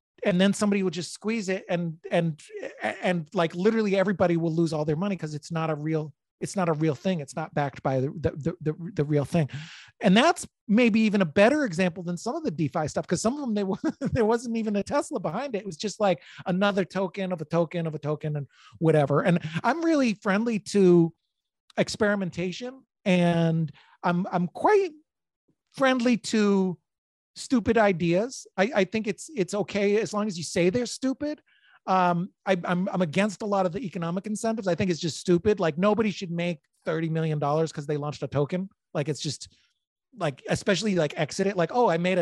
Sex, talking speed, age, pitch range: male, 205 wpm, 40-59, 160-205 Hz